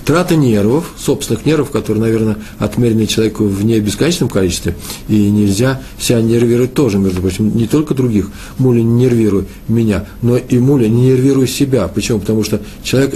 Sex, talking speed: male, 155 wpm